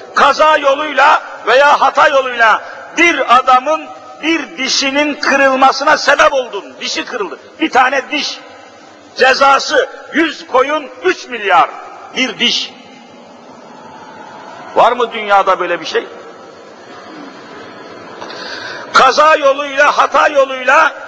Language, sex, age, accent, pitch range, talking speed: Turkish, male, 50-69, native, 260-310 Hz, 95 wpm